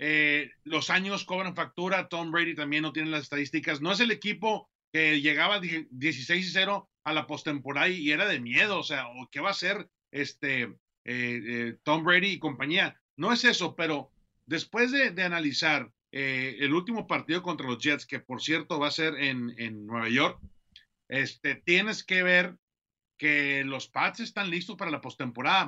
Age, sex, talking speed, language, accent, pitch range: 40-59, male, 180 wpm, Spanish, Mexican, 145-195 Hz